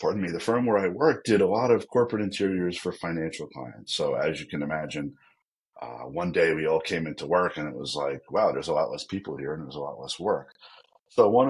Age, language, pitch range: 40-59, English, 75-95 Hz